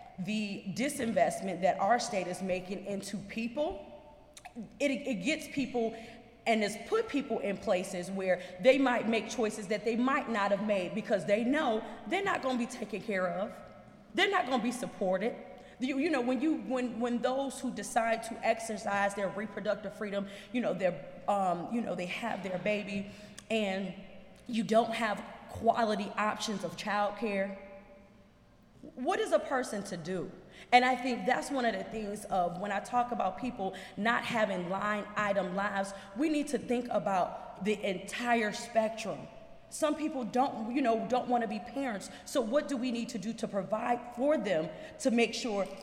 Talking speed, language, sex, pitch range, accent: 180 wpm, English, female, 200-250 Hz, American